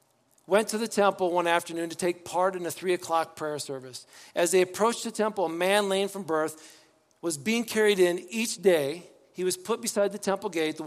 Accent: American